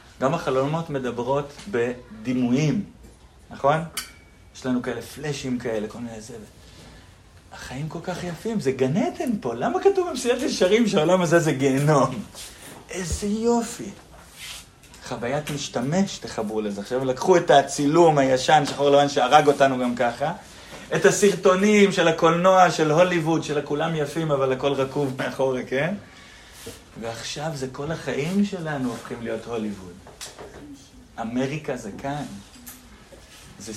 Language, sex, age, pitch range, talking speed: Hebrew, male, 30-49, 125-165 Hz, 125 wpm